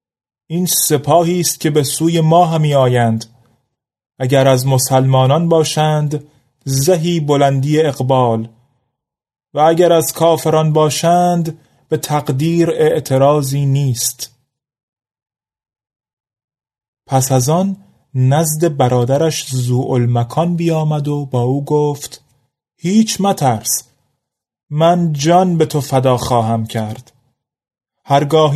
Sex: male